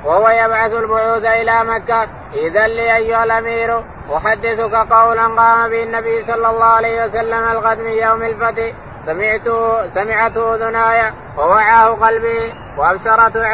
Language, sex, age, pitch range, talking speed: Arabic, male, 20-39, 225-230 Hz, 125 wpm